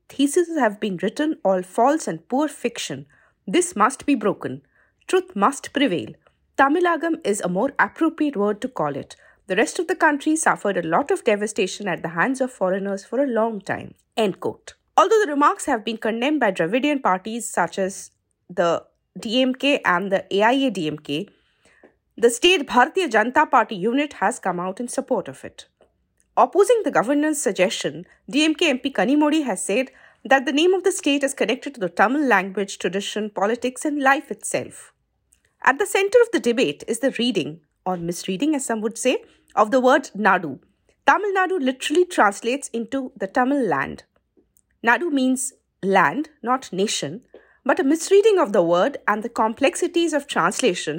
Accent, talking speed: Indian, 170 wpm